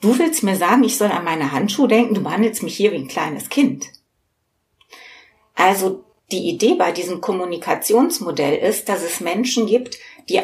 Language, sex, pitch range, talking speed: German, female, 180-225 Hz, 170 wpm